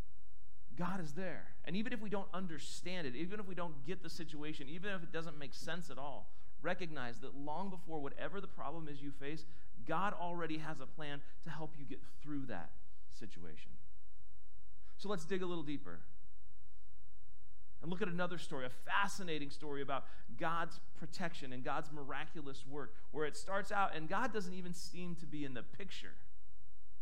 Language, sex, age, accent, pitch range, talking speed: English, male, 40-59, American, 130-170 Hz, 180 wpm